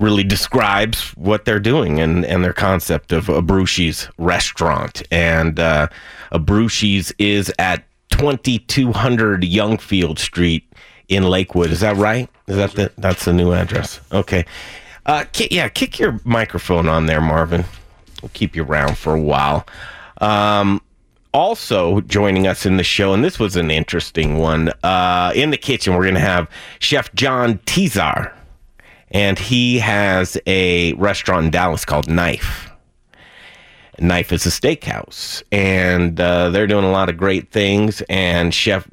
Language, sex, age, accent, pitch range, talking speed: English, male, 30-49, American, 85-100 Hz, 155 wpm